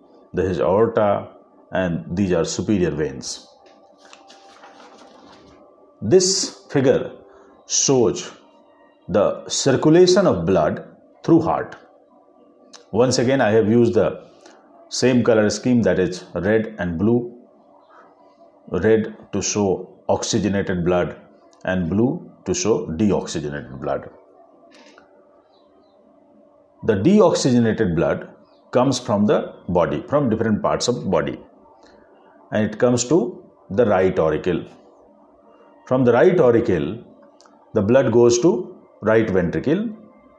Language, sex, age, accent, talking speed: Hindi, male, 50-69, native, 105 wpm